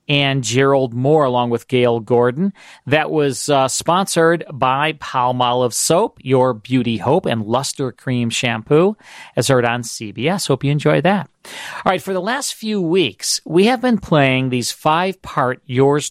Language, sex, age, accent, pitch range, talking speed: English, male, 40-59, American, 120-155 Hz, 160 wpm